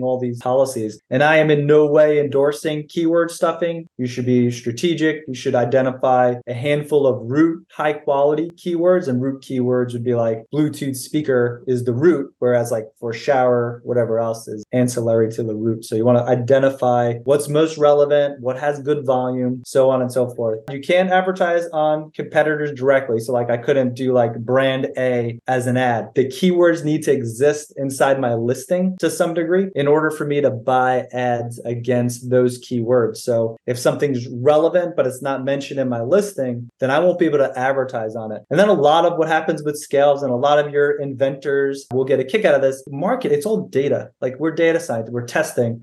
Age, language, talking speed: 20-39, English, 205 wpm